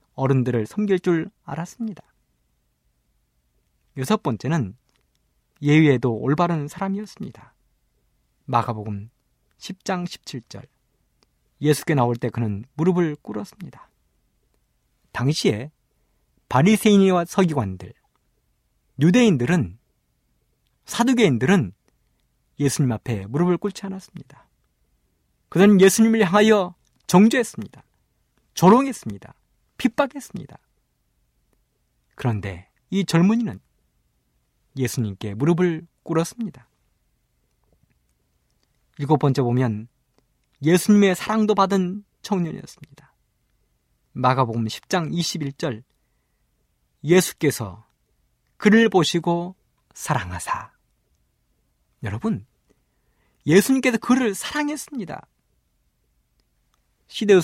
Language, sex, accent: Korean, male, native